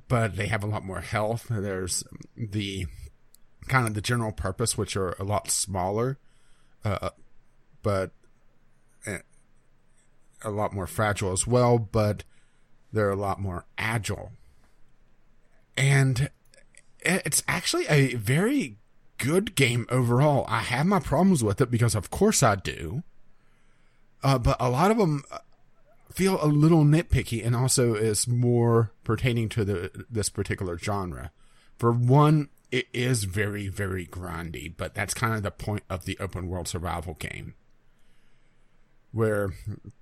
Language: English